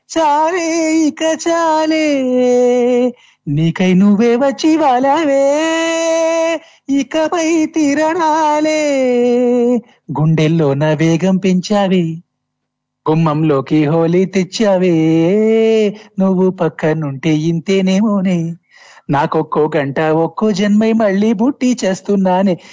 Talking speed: 65 wpm